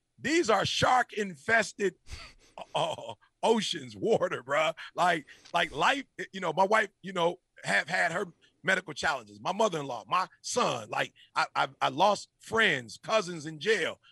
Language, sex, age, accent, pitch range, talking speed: English, male, 40-59, American, 165-230 Hz, 150 wpm